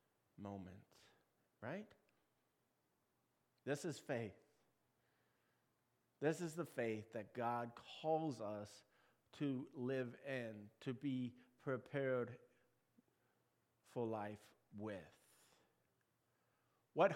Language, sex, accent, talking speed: English, male, American, 80 wpm